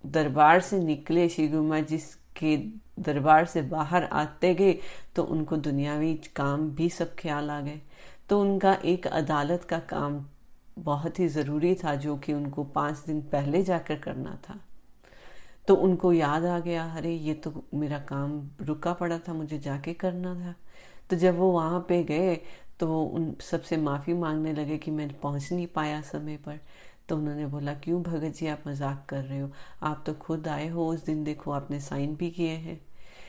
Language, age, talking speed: Hindi, 30-49, 180 wpm